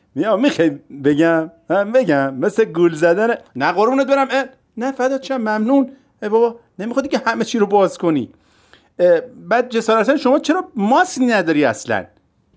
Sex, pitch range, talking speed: male, 175-265 Hz, 155 wpm